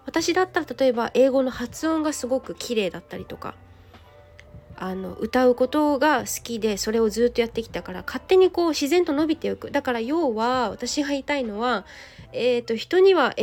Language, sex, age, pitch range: Japanese, female, 20-39, 215-295 Hz